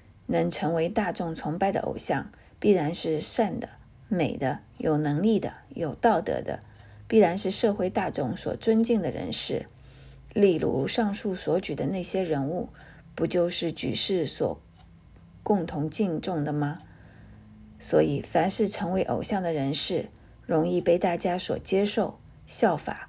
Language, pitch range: Chinese, 155-205 Hz